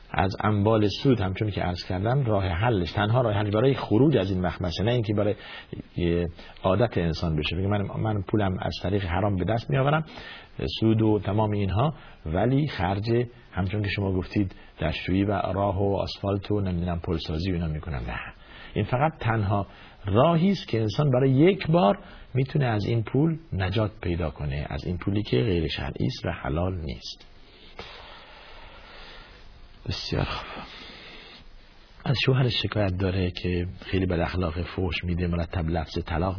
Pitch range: 90-105 Hz